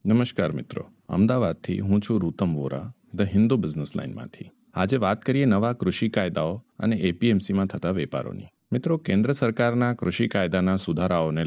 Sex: male